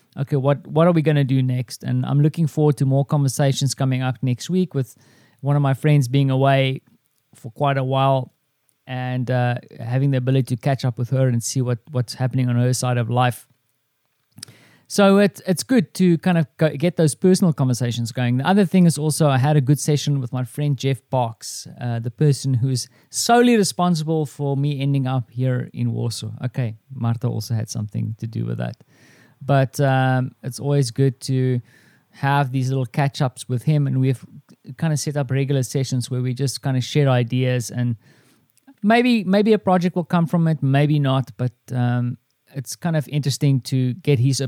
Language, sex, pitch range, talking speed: English, male, 125-150 Hz, 200 wpm